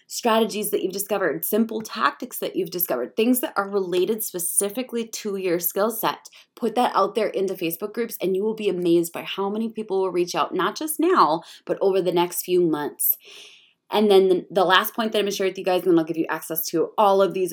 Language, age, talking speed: English, 20-39, 240 wpm